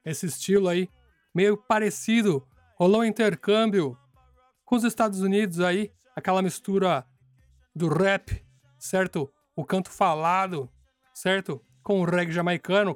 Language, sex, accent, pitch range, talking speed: Portuguese, male, Brazilian, 140-200 Hz, 120 wpm